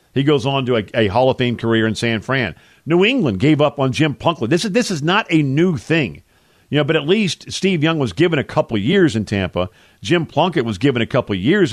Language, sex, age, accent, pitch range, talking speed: English, male, 50-69, American, 115-165 Hz, 255 wpm